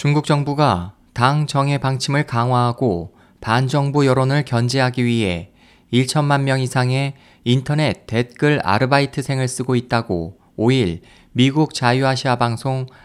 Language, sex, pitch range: Korean, male, 120-150 Hz